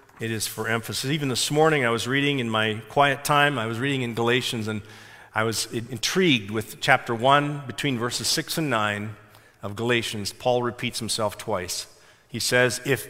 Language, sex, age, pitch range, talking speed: English, male, 40-59, 115-155 Hz, 185 wpm